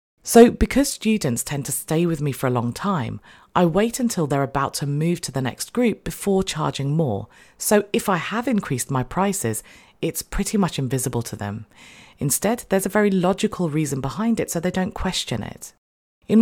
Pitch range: 130-195 Hz